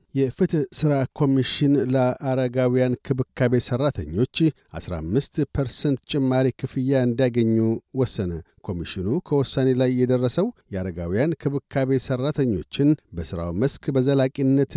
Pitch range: 125-140 Hz